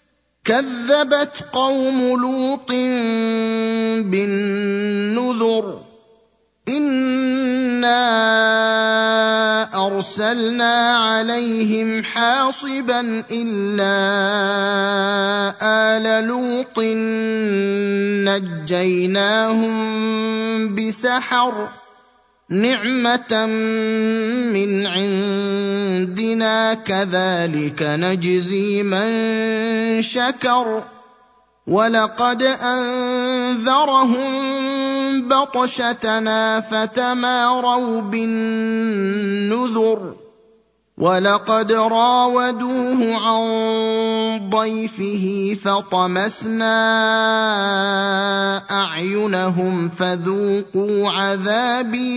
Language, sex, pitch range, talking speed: Arabic, male, 200-245 Hz, 40 wpm